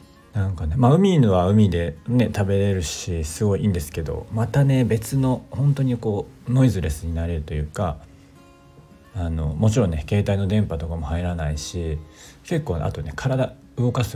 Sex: male